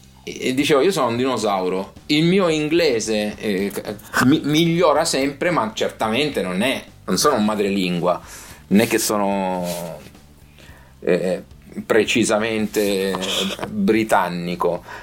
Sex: male